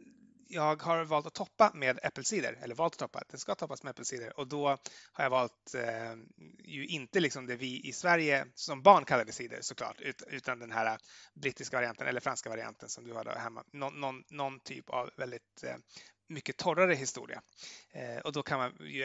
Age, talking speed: 30-49, 185 wpm